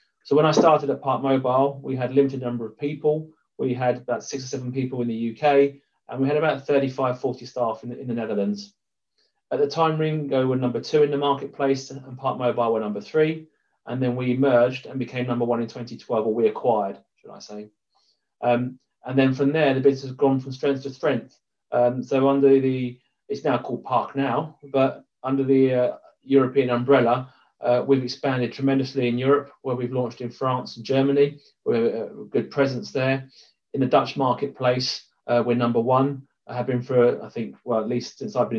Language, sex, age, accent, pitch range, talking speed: English, male, 30-49, British, 120-140 Hz, 210 wpm